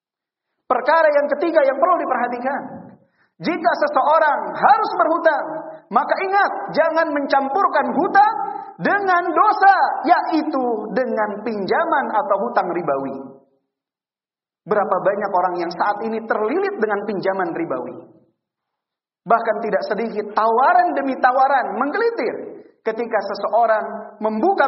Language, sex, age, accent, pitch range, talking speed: Indonesian, male, 40-59, native, 220-345 Hz, 105 wpm